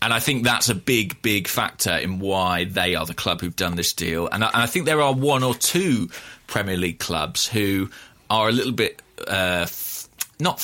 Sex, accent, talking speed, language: male, British, 210 wpm, English